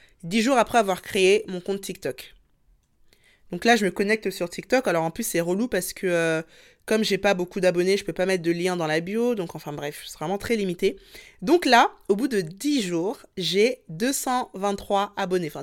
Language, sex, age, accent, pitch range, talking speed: French, female, 20-39, French, 180-225 Hz, 215 wpm